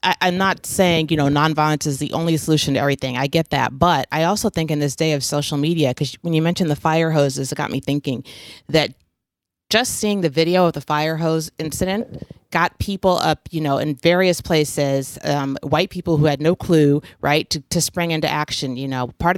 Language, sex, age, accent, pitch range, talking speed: English, female, 30-49, American, 140-175 Hz, 215 wpm